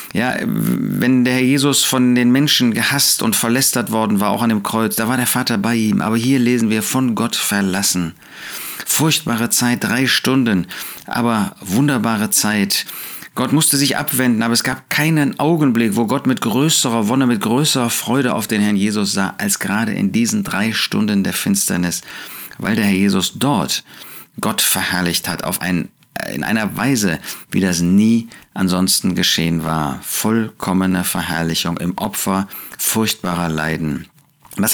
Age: 40-59